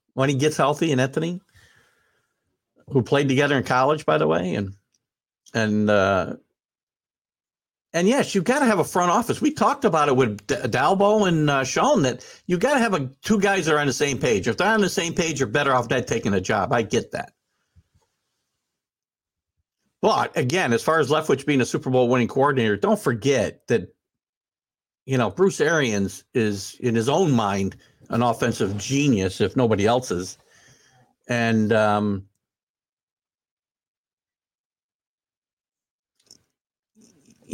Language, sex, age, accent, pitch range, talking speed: English, male, 60-79, American, 115-160 Hz, 155 wpm